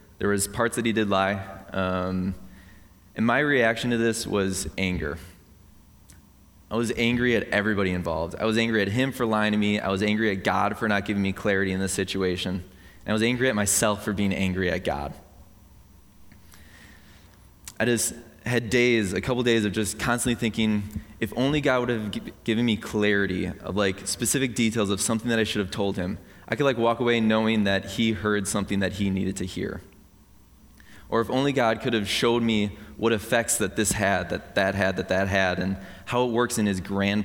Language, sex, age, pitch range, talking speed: English, male, 20-39, 95-115 Hz, 205 wpm